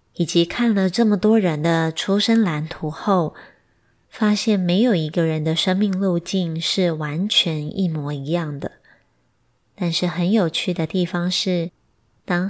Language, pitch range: Chinese, 160-195 Hz